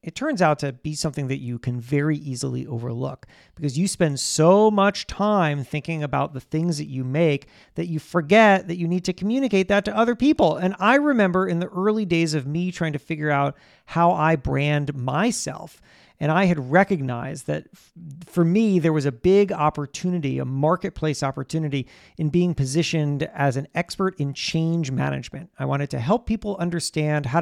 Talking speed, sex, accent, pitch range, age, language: 185 wpm, male, American, 145-205 Hz, 40-59, English